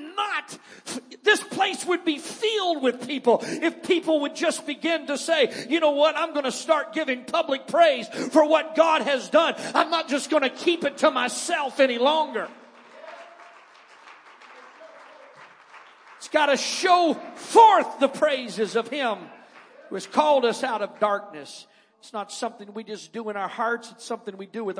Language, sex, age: English, male, 40-59